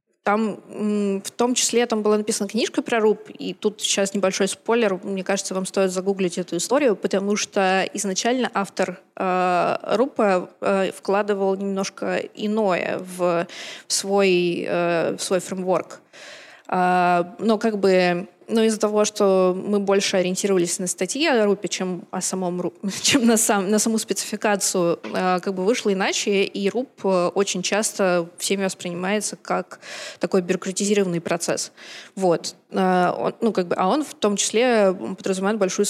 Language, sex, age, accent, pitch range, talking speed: Russian, female, 20-39, native, 185-215 Hz, 145 wpm